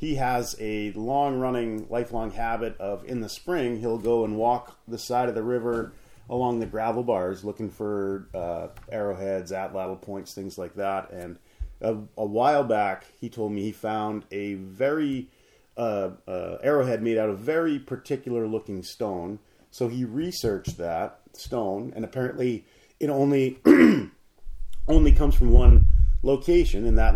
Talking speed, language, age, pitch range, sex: 150 wpm, English, 30-49, 95-125 Hz, male